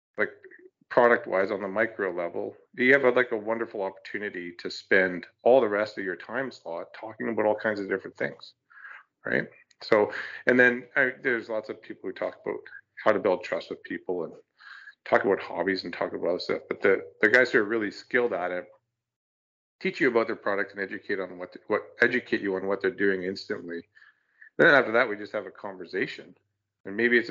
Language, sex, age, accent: English, male, 40-59, American